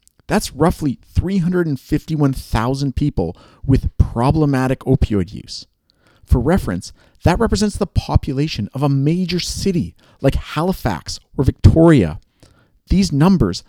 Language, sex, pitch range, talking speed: English, male, 115-165 Hz, 105 wpm